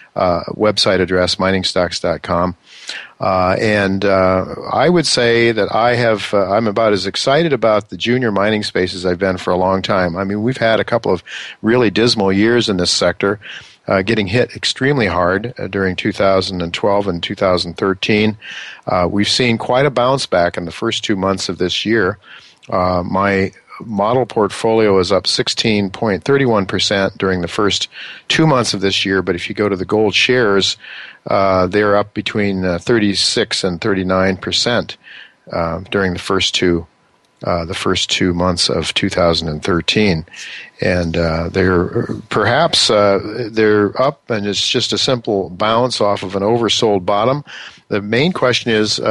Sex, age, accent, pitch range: male, 50-69, American, 95-110 Hz